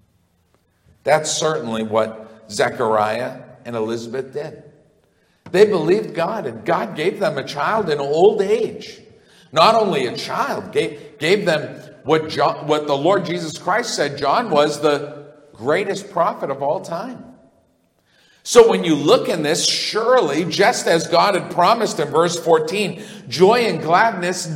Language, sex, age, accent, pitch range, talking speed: English, male, 50-69, American, 135-200 Hz, 145 wpm